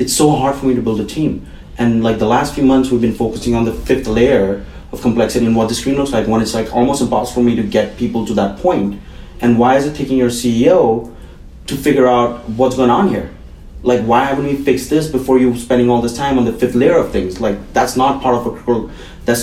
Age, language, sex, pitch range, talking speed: 30-49, English, male, 115-135 Hz, 255 wpm